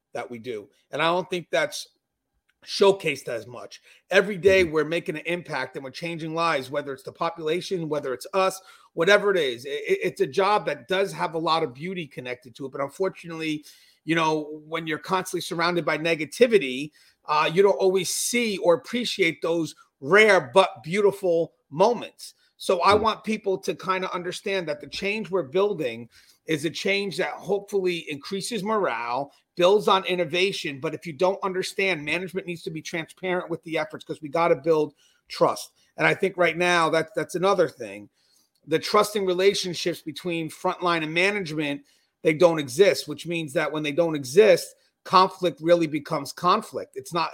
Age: 30-49